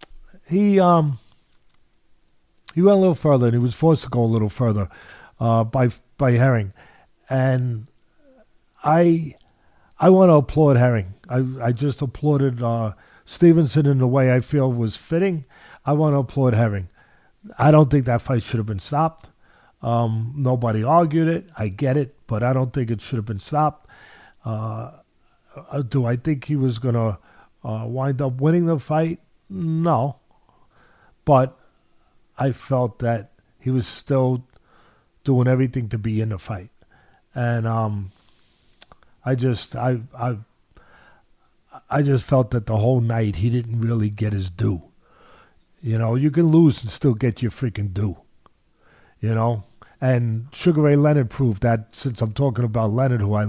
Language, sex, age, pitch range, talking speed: English, male, 40-59, 115-140 Hz, 160 wpm